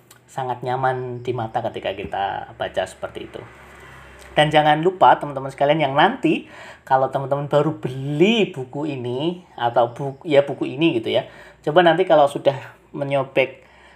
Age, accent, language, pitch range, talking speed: 20-39, native, Indonesian, 125-155 Hz, 145 wpm